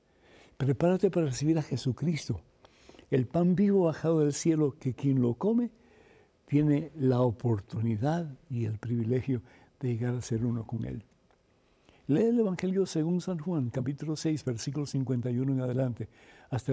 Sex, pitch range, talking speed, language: male, 120-150 Hz, 145 wpm, Spanish